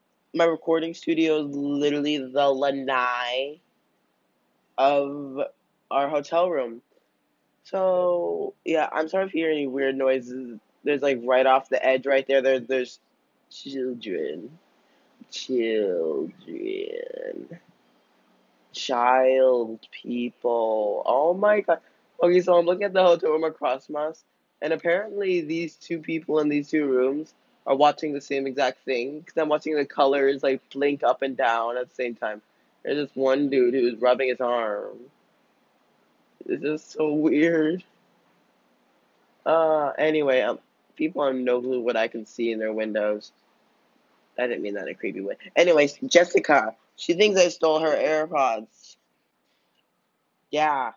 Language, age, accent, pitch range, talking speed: English, 20-39, American, 130-170 Hz, 140 wpm